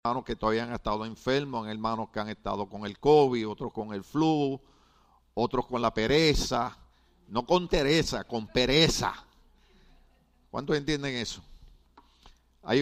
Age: 50-69